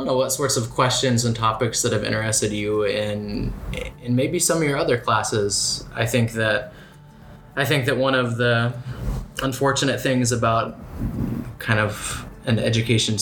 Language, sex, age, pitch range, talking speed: English, male, 20-39, 105-125 Hz, 160 wpm